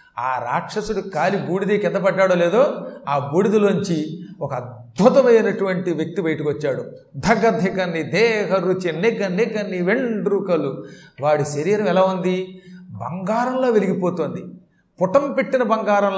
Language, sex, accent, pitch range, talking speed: Telugu, male, native, 160-205 Hz, 115 wpm